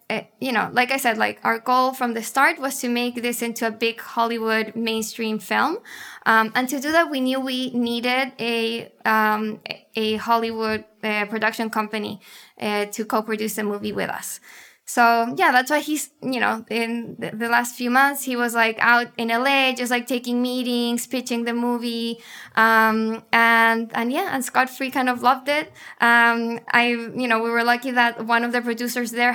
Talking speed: 190 wpm